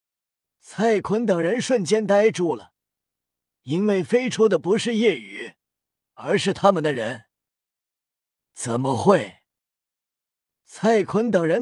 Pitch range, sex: 150-215 Hz, male